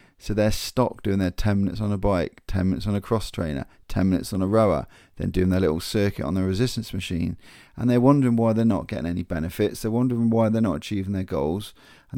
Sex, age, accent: male, 30-49, British